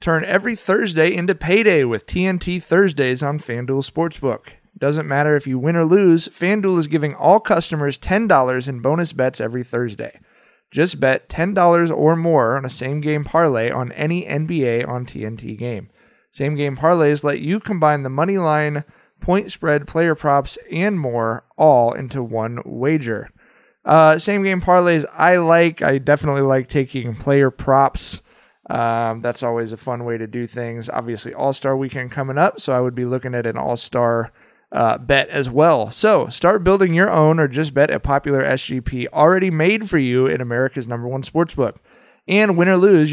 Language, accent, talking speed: English, American, 170 wpm